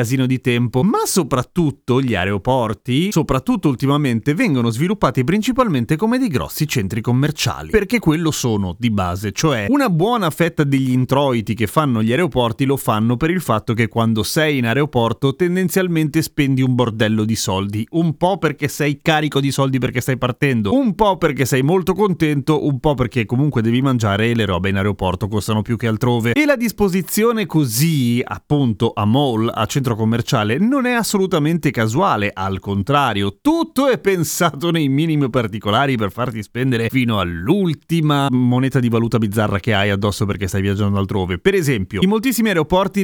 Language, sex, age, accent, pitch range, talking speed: Italian, male, 30-49, native, 115-170 Hz, 170 wpm